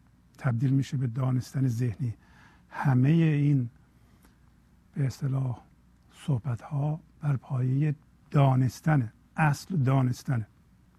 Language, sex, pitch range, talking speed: Persian, male, 90-140 Hz, 80 wpm